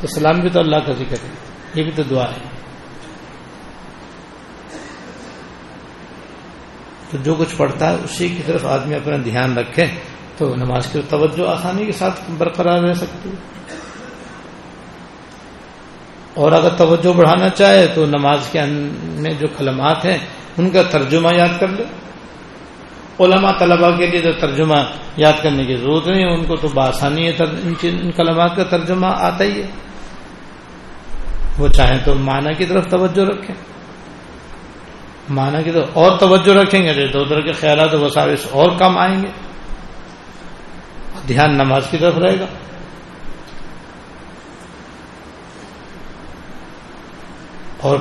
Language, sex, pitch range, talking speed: Urdu, male, 145-175 Hz, 135 wpm